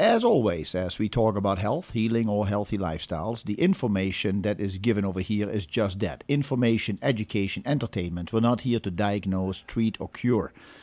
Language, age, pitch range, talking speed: English, 50-69, 100-130 Hz, 175 wpm